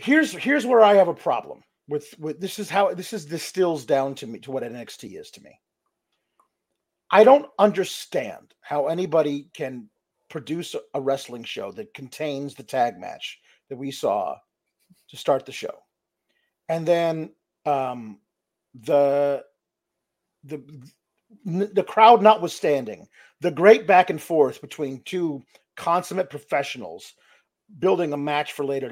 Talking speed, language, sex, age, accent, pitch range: 140 wpm, English, male, 40-59, American, 160-220 Hz